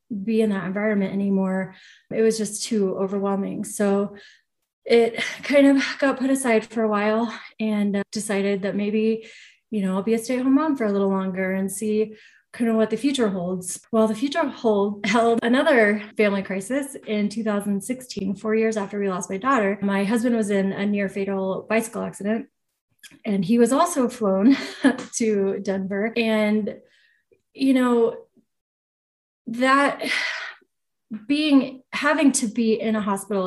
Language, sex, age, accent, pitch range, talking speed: English, female, 30-49, American, 200-235 Hz, 155 wpm